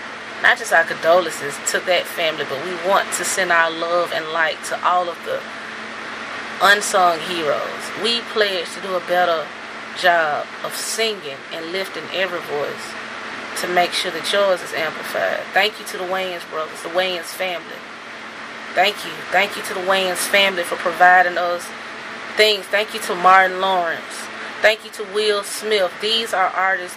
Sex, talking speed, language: female, 170 wpm, English